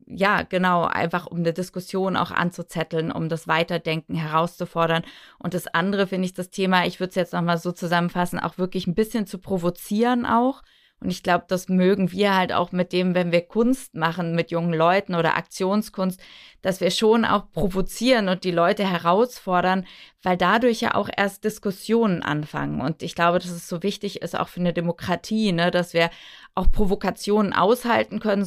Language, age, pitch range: German, 20-39, 170-195 Hz